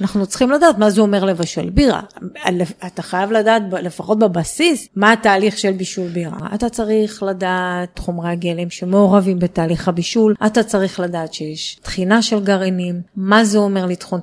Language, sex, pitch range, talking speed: Hebrew, female, 190-230 Hz, 155 wpm